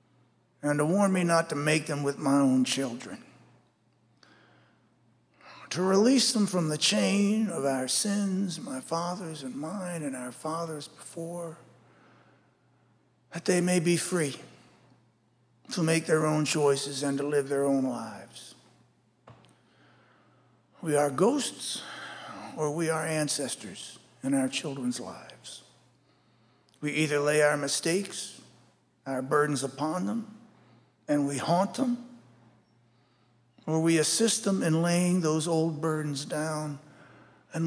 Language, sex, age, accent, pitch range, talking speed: Swedish, male, 50-69, American, 135-170 Hz, 125 wpm